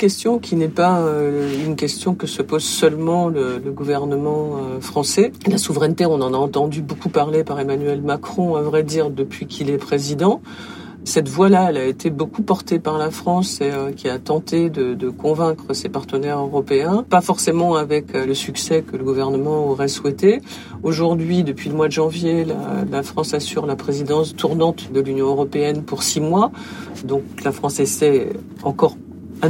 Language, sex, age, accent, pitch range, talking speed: French, female, 50-69, French, 140-175 Hz, 180 wpm